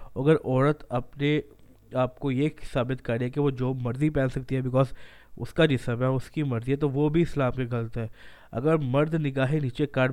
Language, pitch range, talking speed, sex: Urdu, 130-155 Hz, 200 wpm, male